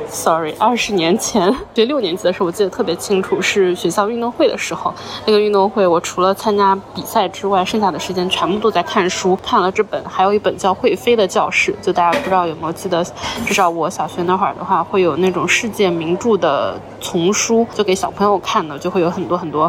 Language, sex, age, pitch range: Chinese, female, 20-39, 175-195 Hz